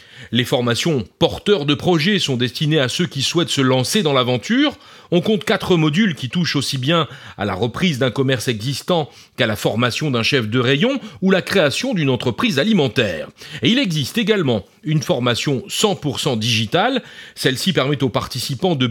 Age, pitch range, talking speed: 40-59, 125-195 Hz, 175 wpm